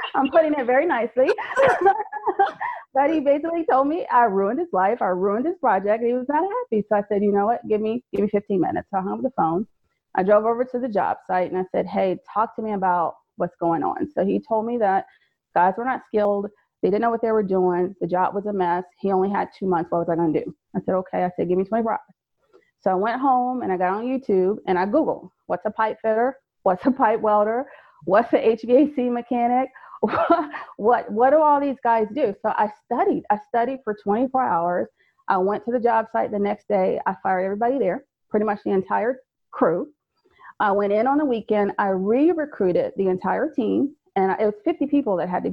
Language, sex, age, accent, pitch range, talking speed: English, female, 30-49, American, 200-270 Hz, 230 wpm